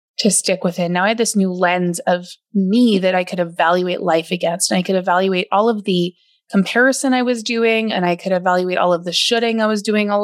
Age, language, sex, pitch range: 20-39, English, female, 185-230 Hz